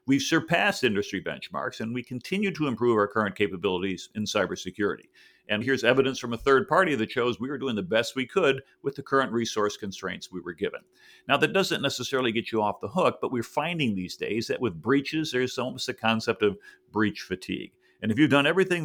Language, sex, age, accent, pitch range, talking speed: English, male, 50-69, American, 105-155 Hz, 215 wpm